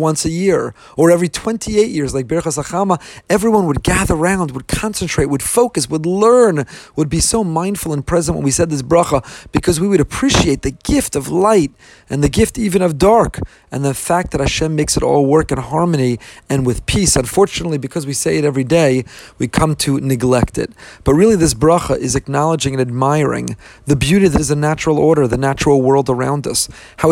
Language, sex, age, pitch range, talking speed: English, male, 40-59, 135-170 Hz, 205 wpm